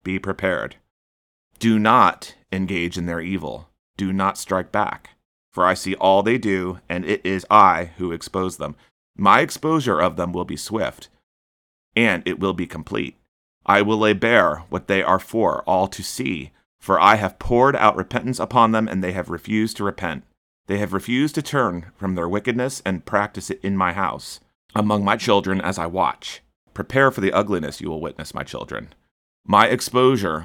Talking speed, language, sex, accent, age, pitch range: 185 wpm, English, male, American, 30-49, 85-105 Hz